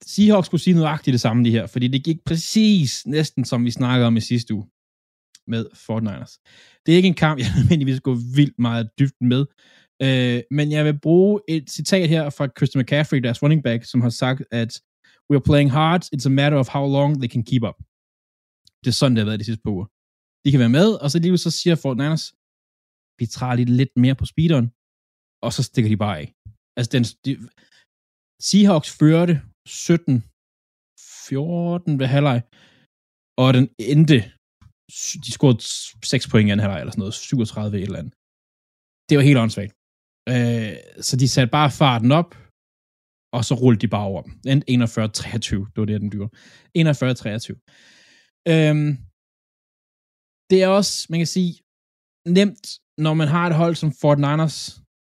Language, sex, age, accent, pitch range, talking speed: Danish, male, 20-39, native, 110-150 Hz, 180 wpm